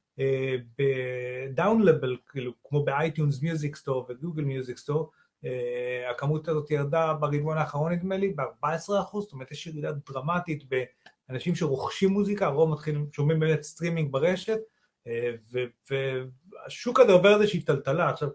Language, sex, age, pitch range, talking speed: Hebrew, male, 30-49, 135-175 Hz, 135 wpm